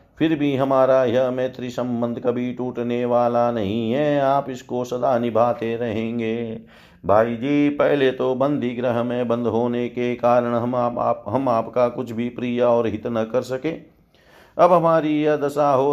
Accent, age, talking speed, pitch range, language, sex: native, 50-69, 170 wpm, 120-140 Hz, Hindi, male